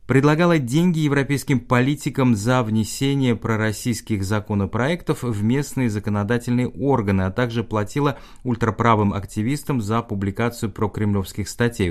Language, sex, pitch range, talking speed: Russian, male, 100-140 Hz, 105 wpm